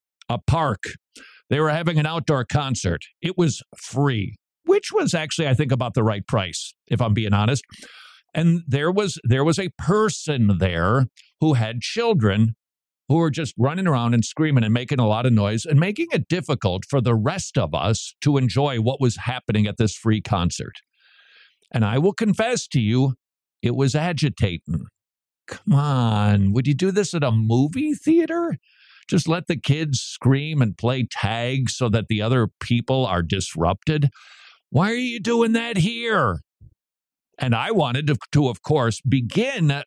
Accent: American